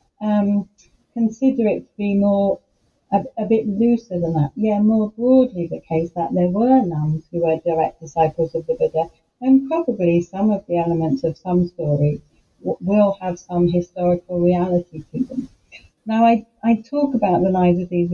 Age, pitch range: 40-59, 165-210 Hz